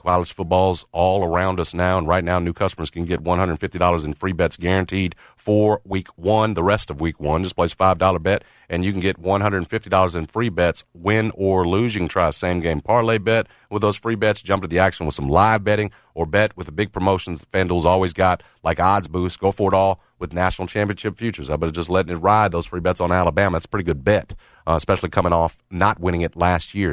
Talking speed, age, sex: 240 wpm, 40-59, male